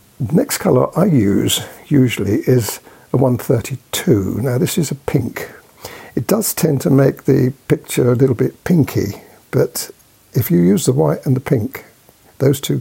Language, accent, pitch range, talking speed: English, British, 115-140 Hz, 170 wpm